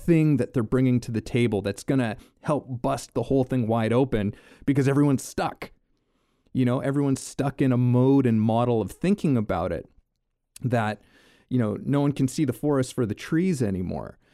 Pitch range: 105-135 Hz